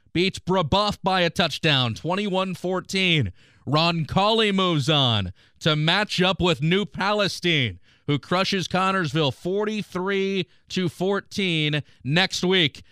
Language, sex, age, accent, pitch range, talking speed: English, male, 30-49, American, 145-195 Hz, 100 wpm